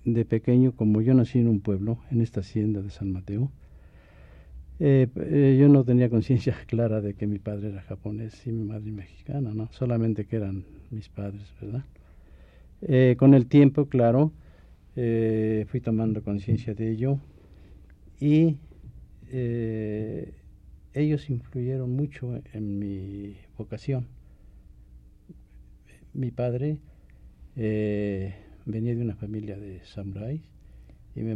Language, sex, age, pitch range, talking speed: Spanish, male, 50-69, 95-120 Hz, 130 wpm